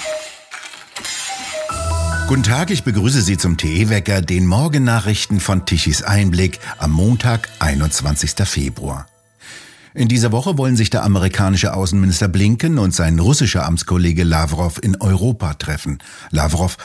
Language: German